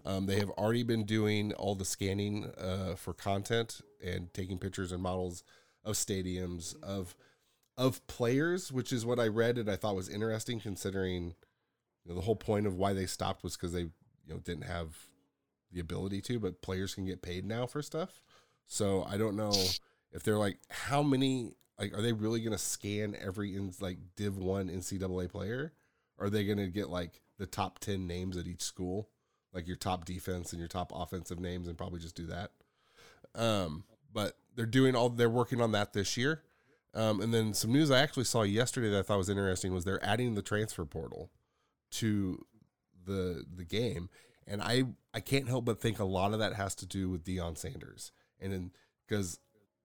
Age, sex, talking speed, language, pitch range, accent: 20-39, male, 200 wpm, English, 90-115 Hz, American